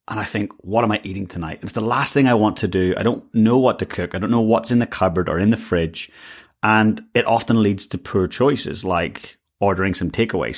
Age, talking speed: 30-49, 250 wpm